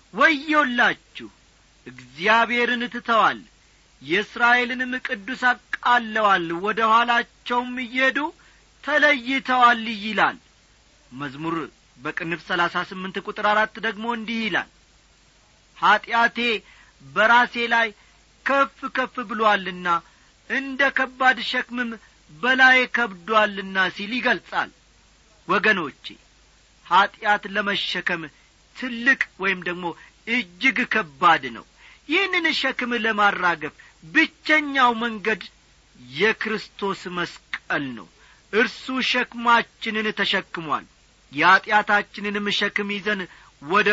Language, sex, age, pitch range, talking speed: Amharic, male, 40-59, 190-250 Hz, 75 wpm